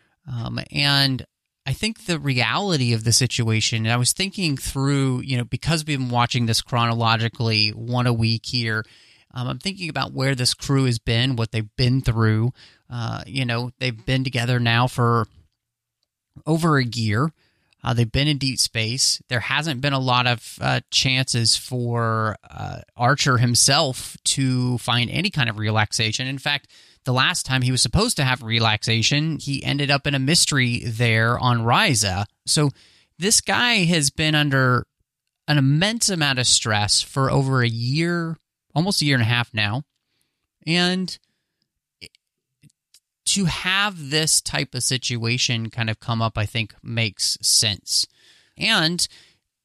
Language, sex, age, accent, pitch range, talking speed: English, male, 30-49, American, 115-145 Hz, 160 wpm